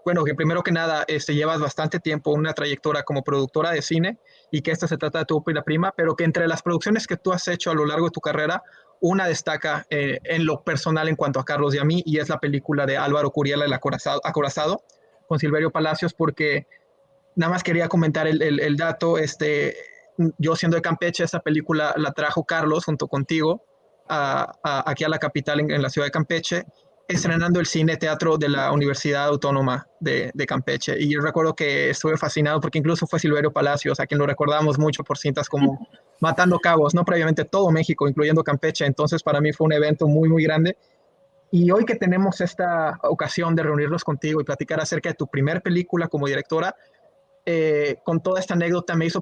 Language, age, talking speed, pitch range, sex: Spanish, 20-39, 205 wpm, 150-170 Hz, male